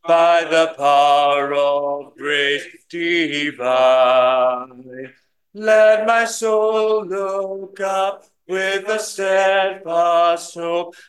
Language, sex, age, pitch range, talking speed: English, male, 40-59, 165-220 Hz, 80 wpm